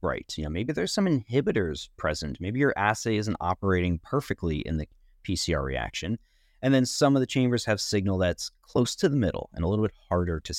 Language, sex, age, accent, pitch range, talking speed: English, male, 30-49, American, 85-120 Hz, 200 wpm